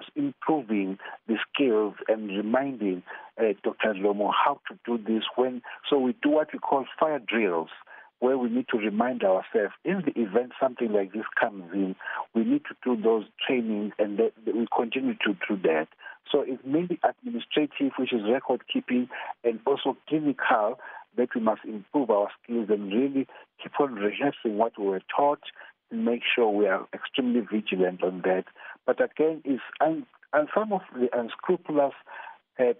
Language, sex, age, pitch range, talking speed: English, male, 50-69, 115-155 Hz, 170 wpm